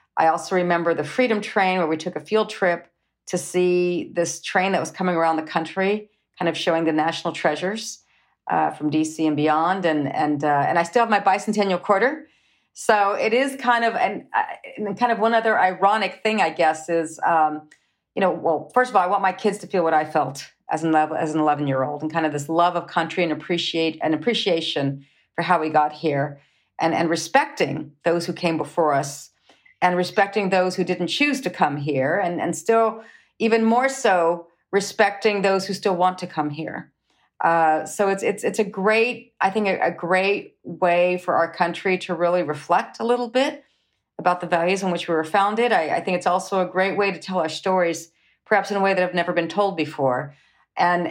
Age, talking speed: 40-59, 215 wpm